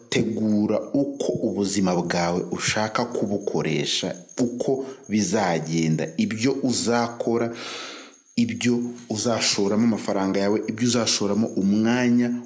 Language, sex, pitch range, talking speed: English, male, 95-125 Hz, 85 wpm